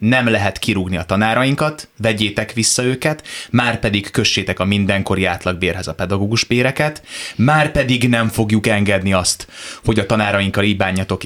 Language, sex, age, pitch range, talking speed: Hungarian, male, 20-39, 95-125 Hz, 135 wpm